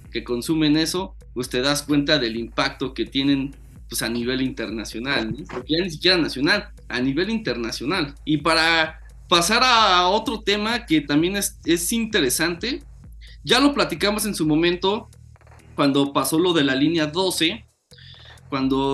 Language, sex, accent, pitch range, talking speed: Spanish, male, Mexican, 140-175 Hz, 155 wpm